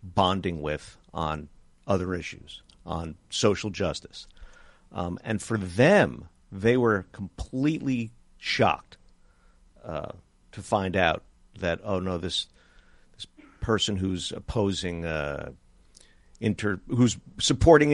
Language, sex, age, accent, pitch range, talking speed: English, male, 50-69, American, 85-105 Hz, 105 wpm